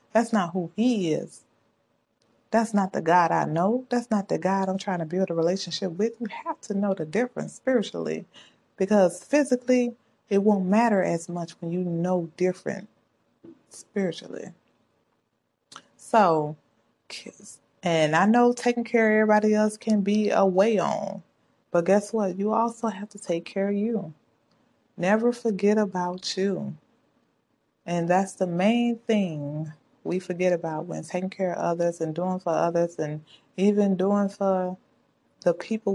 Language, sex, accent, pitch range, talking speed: English, female, American, 170-210 Hz, 155 wpm